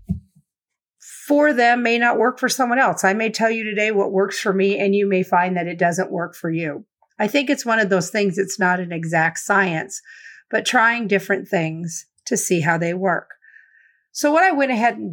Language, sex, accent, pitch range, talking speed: English, female, American, 175-240 Hz, 215 wpm